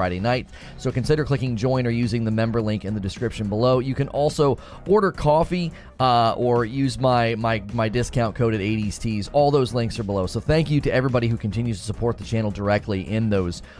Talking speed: 215 wpm